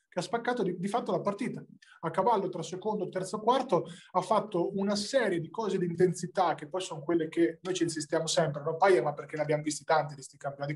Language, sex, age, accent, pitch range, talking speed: Italian, male, 20-39, native, 150-185 Hz, 240 wpm